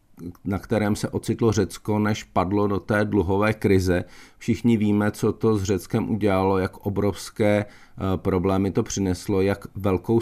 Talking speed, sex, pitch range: 145 wpm, male, 95-110 Hz